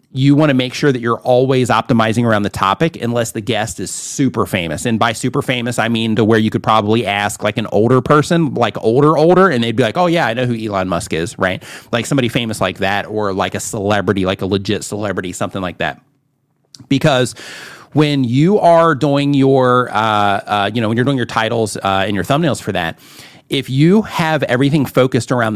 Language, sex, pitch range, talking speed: English, male, 110-140 Hz, 220 wpm